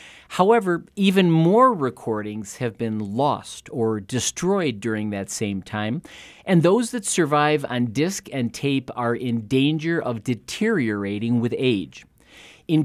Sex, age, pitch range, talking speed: male, 40-59, 115-160 Hz, 135 wpm